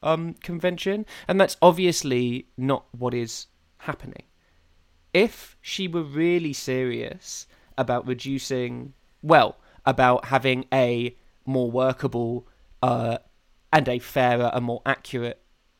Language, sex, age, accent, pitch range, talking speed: English, male, 20-39, British, 120-145 Hz, 110 wpm